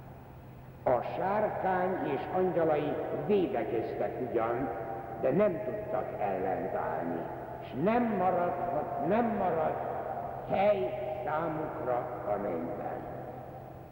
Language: Hungarian